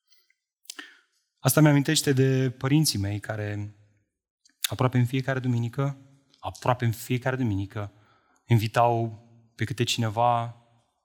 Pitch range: 110-140 Hz